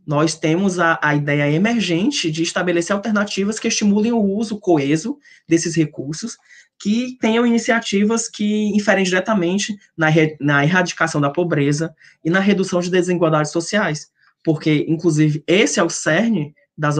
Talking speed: 140 wpm